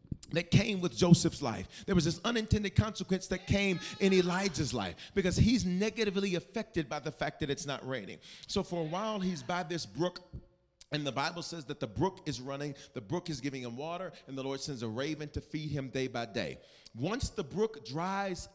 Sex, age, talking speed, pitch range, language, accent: male, 40-59, 210 wpm, 135-185 Hz, English, American